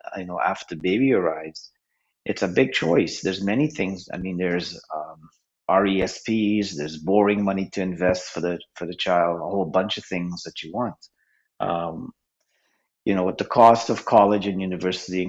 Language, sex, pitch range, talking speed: English, male, 90-115 Hz, 175 wpm